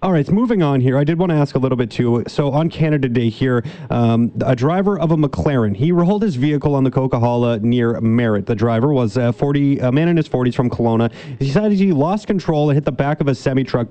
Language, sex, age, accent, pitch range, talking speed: English, male, 30-49, American, 125-155 Hz, 245 wpm